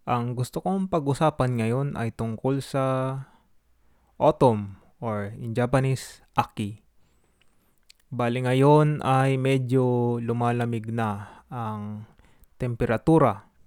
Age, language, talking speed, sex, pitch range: 20-39, Filipino, 90 wpm, male, 110-130 Hz